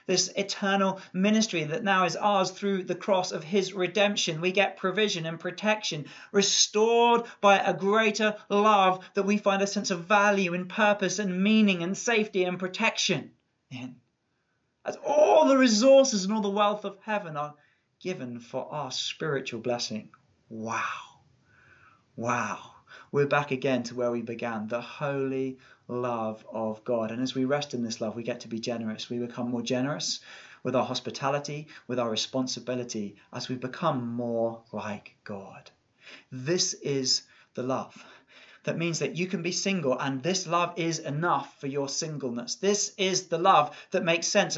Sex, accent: male, British